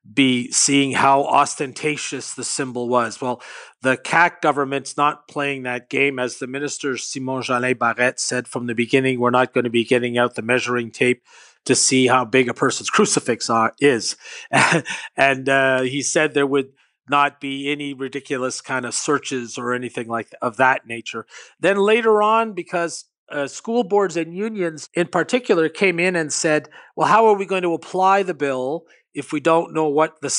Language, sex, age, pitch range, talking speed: English, male, 40-59, 130-165 Hz, 185 wpm